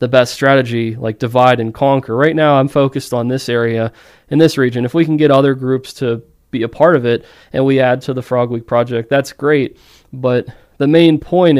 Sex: male